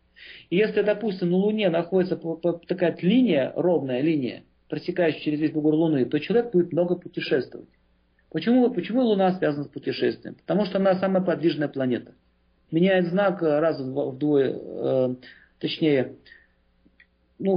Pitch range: 145-190 Hz